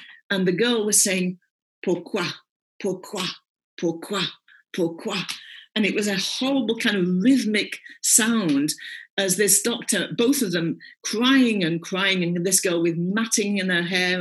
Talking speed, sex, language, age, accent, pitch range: 150 wpm, female, English, 40-59, British, 170-230 Hz